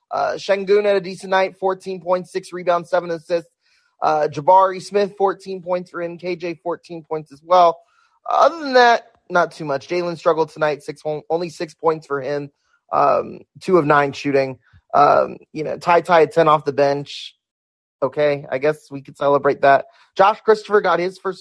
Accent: American